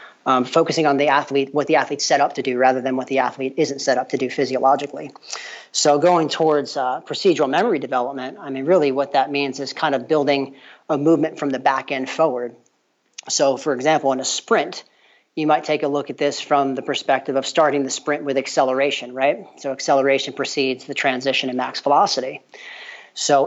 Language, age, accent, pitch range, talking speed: English, 40-59, American, 135-155 Hz, 200 wpm